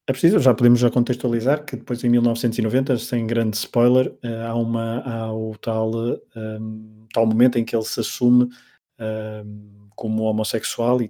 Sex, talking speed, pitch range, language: male, 160 wpm, 110-120 Hz, Portuguese